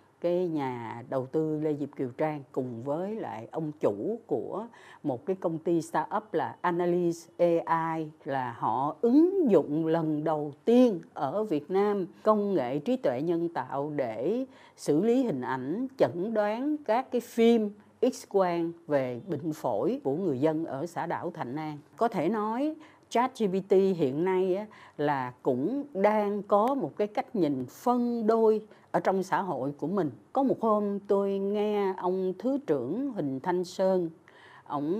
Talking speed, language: 165 wpm, Vietnamese